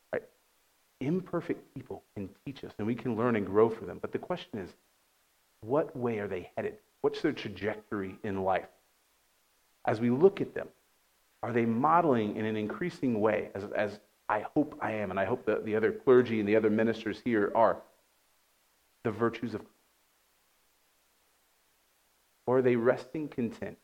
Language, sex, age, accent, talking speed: English, male, 40-59, American, 170 wpm